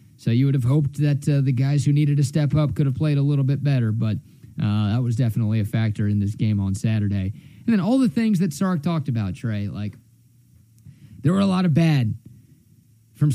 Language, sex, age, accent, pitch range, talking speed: English, male, 30-49, American, 120-180 Hz, 230 wpm